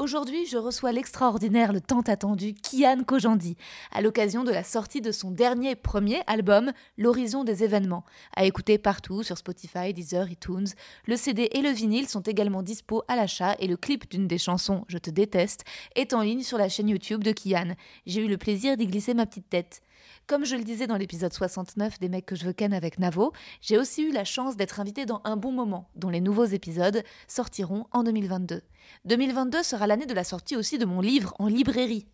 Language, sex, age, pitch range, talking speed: French, female, 20-39, 200-245 Hz, 205 wpm